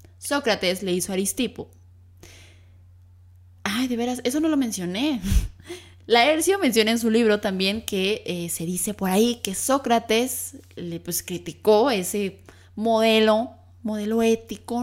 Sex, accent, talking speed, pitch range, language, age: female, Mexican, 135 wpm, 175-240 Hz, Spanish, 10-29